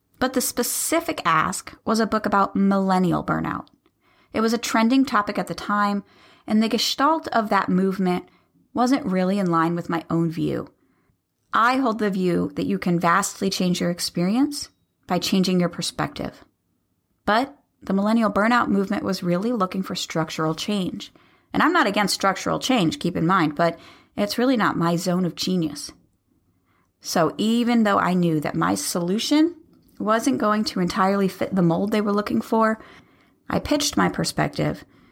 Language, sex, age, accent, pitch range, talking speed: English, female, 30-49, American, 170-225 Hz, 165 wpm